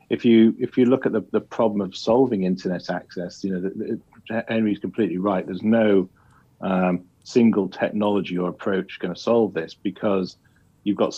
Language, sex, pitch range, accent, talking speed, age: English, male, 95-105 Hz, British, 185 wpm, 40-59